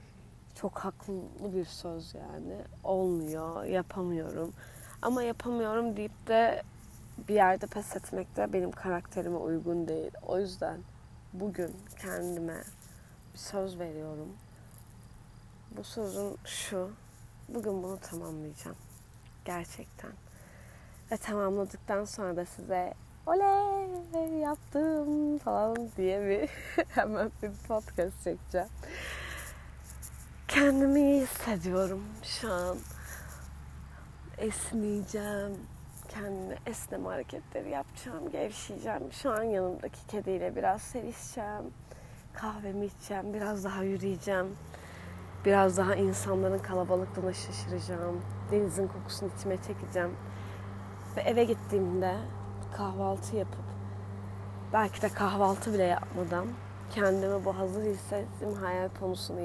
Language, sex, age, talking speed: Turkish, female, 30-49, 95 wpm